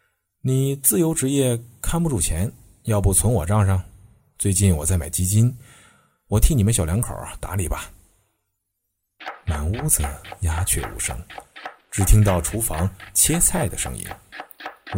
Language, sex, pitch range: Chinese, male, 85-105 Hz